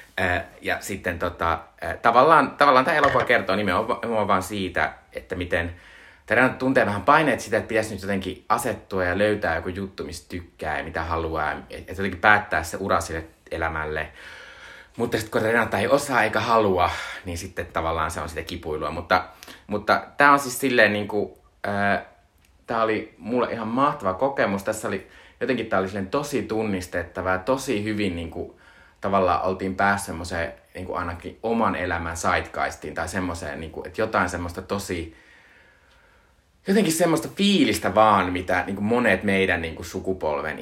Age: 30-49